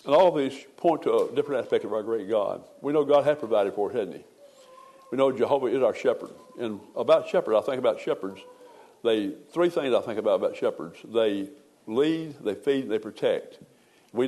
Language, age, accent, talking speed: English, 60-79, American, 215 wpm